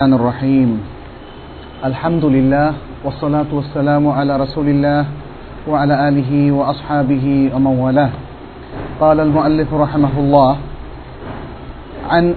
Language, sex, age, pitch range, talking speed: Bengali, male, 40-59, 140-160 Hz, 80 wpm